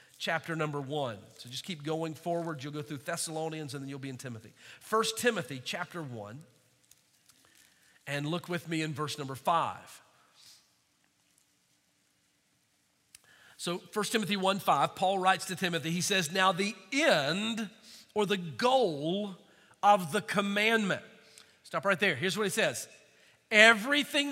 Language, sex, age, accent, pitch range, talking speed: English, male, 40-59, American, 170-250 Hz, 140 wpm